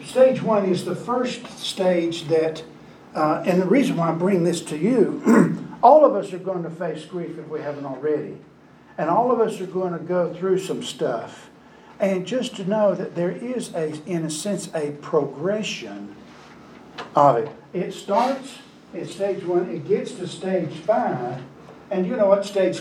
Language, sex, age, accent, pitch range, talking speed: English, male, 60-79, American, 165-220 Hz, 185 wpm